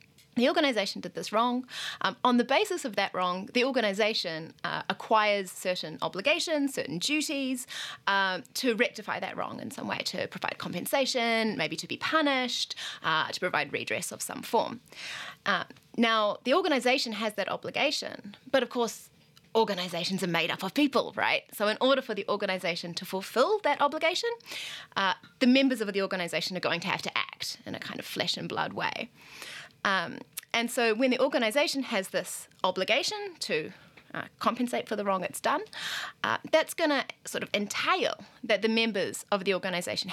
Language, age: English, 20-39